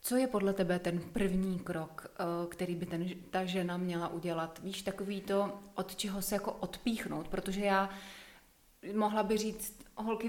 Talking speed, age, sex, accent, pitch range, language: 165 wpm, 30-49, female, native, 190-220 Hz, Czech